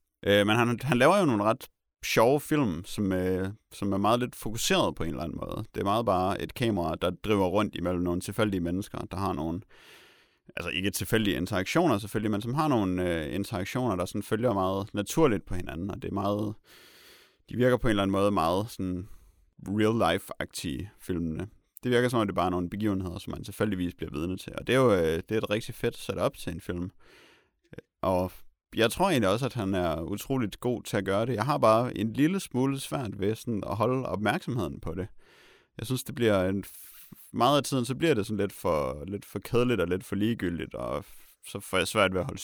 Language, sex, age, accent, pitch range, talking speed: Danish, male, 30-49, native, 95-115 Hz, 225 wpm